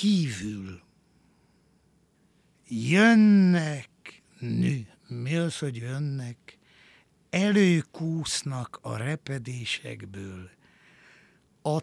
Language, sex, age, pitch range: Hungarian, male, 60-79, 115-180 Hz